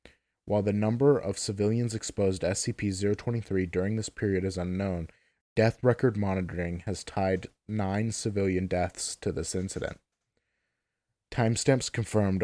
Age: 30-49